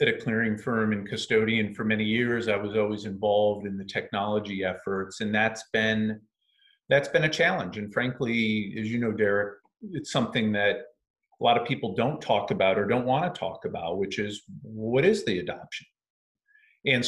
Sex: male